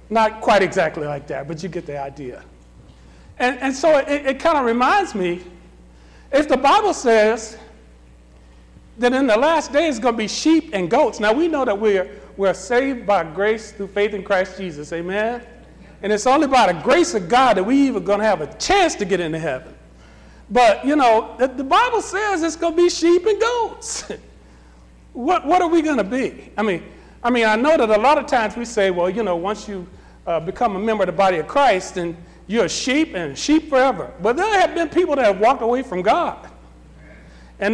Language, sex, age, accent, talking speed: English, male, 40-59, American, 215 wpm